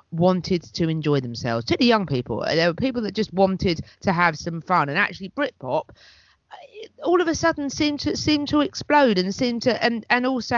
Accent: British